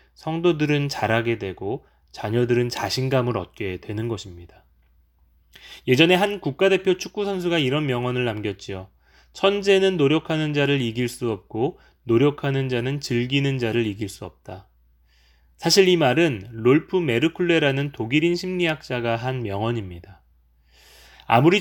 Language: Korean